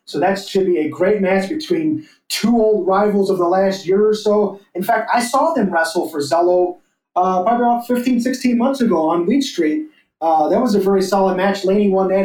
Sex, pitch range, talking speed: male, 175-220 Hz, 220 wpm